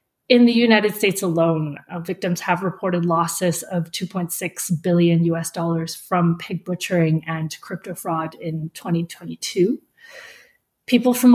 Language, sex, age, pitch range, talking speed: English, female, 30-49, 170-200 Hz, 125 wpm